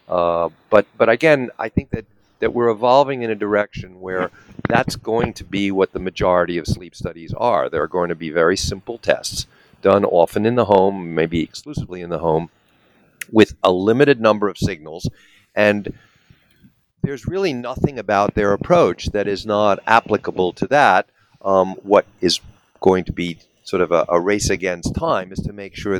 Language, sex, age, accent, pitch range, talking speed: English, male, 50-69, American, 90-115 Hz, 180 wpm